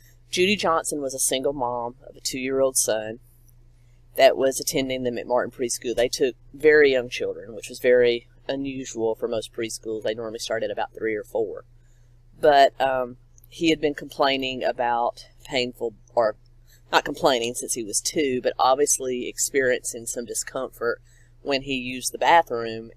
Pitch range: 120-140 Hz